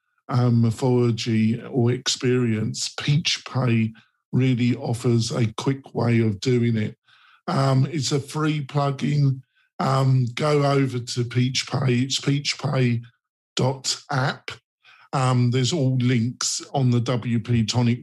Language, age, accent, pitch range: English, 50-69, British, 120-140 Hz